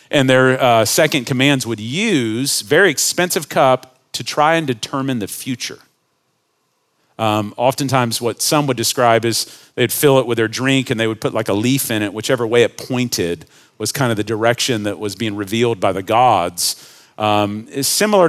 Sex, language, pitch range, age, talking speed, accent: male, English, 120-150 Hz, 40-59, 185 wpm, American